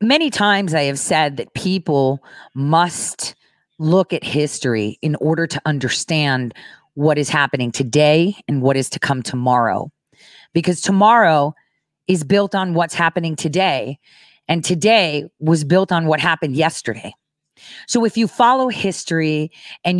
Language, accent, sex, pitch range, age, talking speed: English, American, female, 135-185 Hz, 40-59, 140 wpm